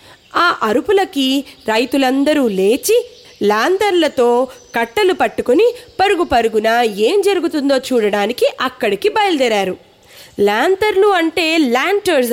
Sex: female